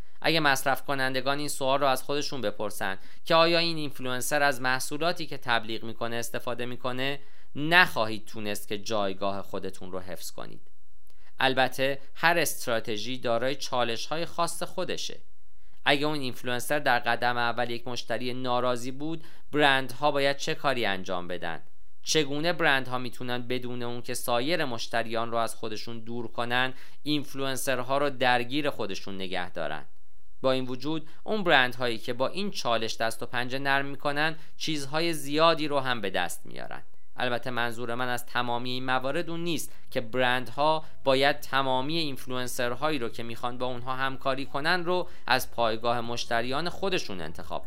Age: 40-59